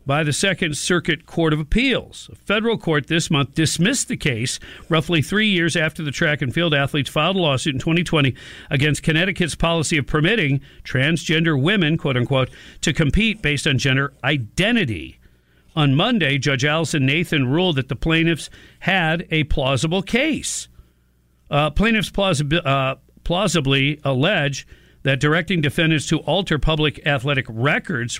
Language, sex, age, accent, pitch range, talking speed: English, male, 50-69, American, 130-170 Hz, 145 wpm